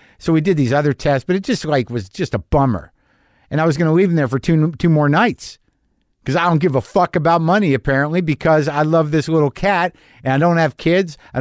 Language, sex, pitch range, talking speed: English, male, 125-175 Hz, 250 wpm